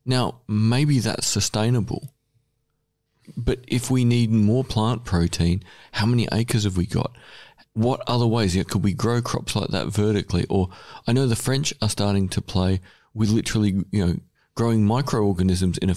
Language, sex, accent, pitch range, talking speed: English, male, Australian, 100-130 Hz, 175 wpm